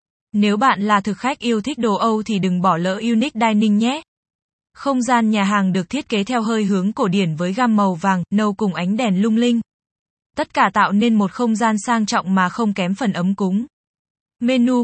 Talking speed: 220 wpm